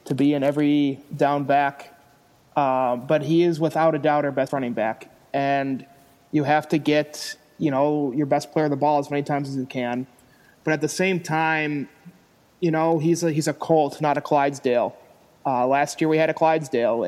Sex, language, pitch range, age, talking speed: male, English, 135-160 Hz, 30-49, 200 wpm